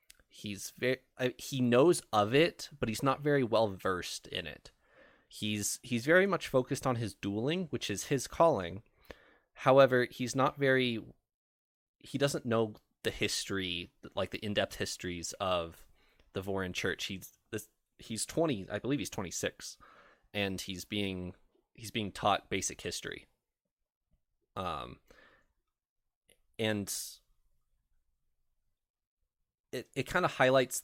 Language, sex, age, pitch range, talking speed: English, male, 20-39, 95-130 Hz, 125 wpm